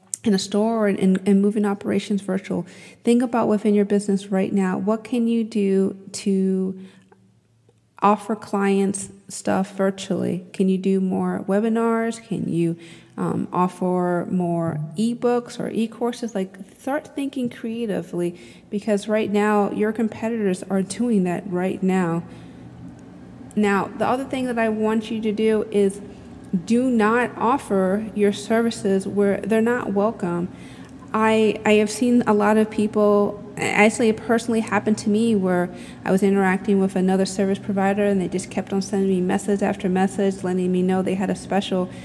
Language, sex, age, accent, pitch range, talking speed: English, female, 30-49, American, 195-220 Hz, 160 wpm